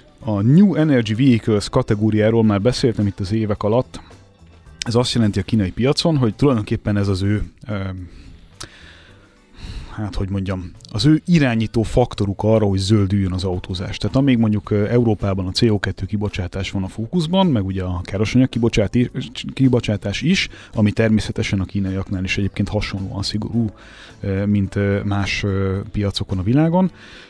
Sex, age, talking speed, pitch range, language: male, 30-49, 140 wpm, 100-125 Hz, Hungarian